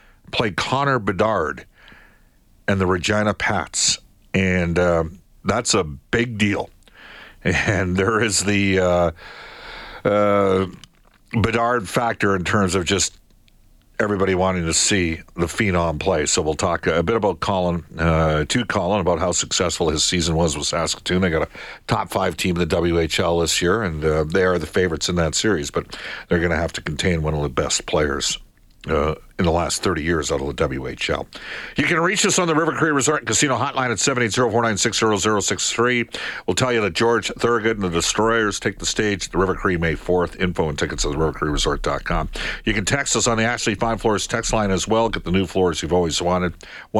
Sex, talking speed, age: male, 195 wpm, 50-69